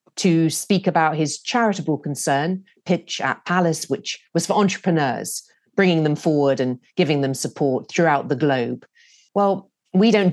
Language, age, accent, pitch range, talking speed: English, 40-59, British, 135-170 Hz, 150 wpm